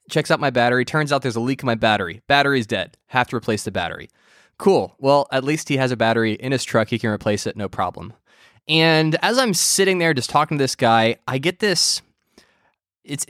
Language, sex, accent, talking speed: English, male, American, 225 wpm